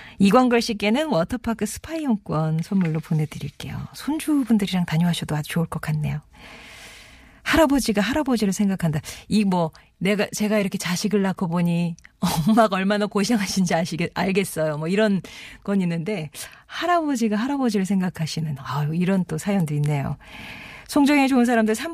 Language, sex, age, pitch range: Korean, female, 40-59, 155-220 Hz